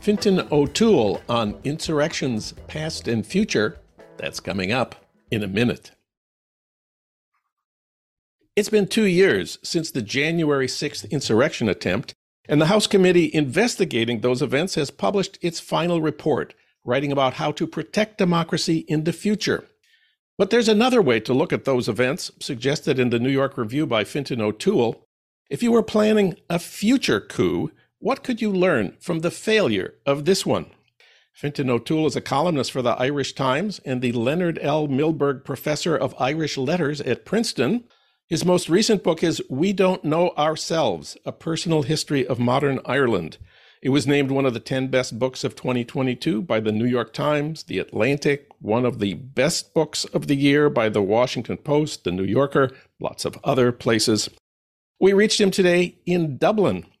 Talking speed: 165 wpm